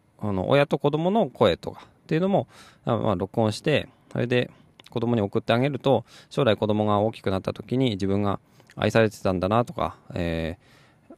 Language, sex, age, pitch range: Japanese, male, 20-39, 95-130 Hz